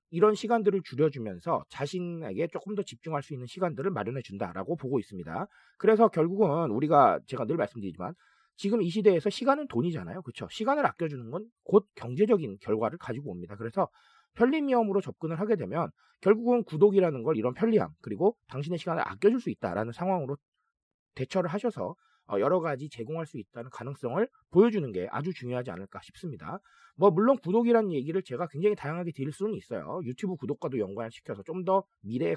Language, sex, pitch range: Korean, male, 135-210 Hz